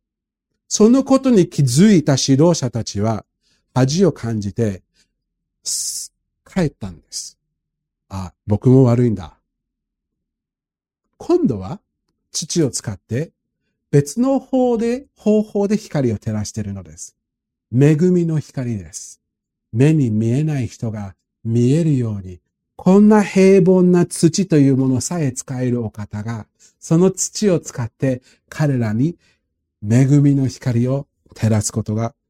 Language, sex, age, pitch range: Japanese, male, 50-69, 110-180 Hz